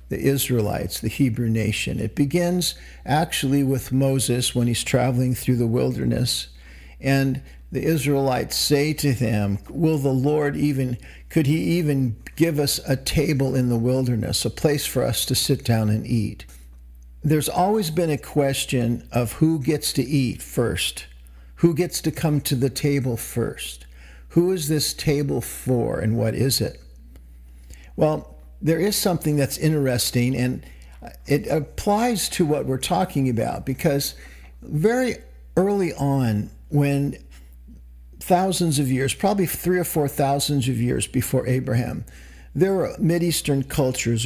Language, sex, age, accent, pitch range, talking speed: English, male, 50-69, American, 110-150 Hz, 145 wpm